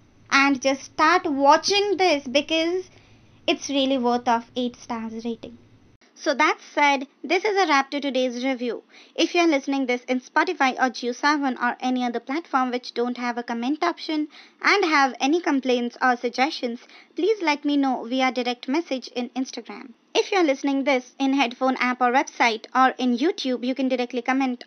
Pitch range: 245-305 Hz